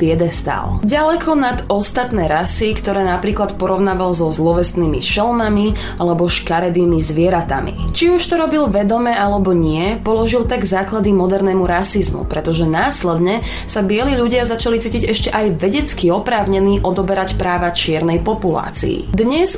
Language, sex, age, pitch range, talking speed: Slovak, female, 20-39, 175-235 Hz, 130 wpm